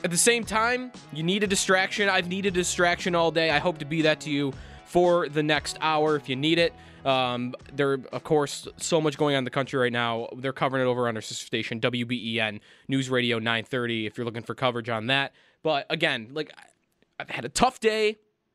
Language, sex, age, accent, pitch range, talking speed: English, male, 20-39, American, 145-200 Hz, 225 wpm